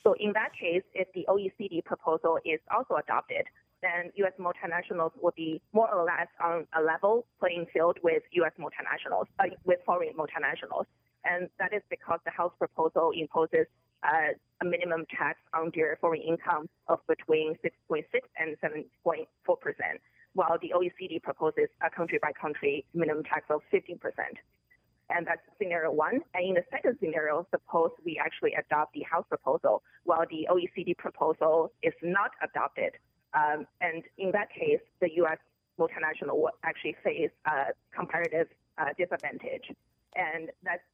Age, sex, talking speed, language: 20-39, female, 150 wpm, English